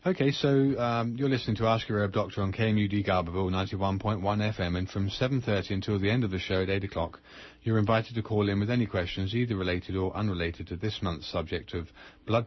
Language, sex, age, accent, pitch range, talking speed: English, male, 30-49, British, 95-110 Hz, 215 wpm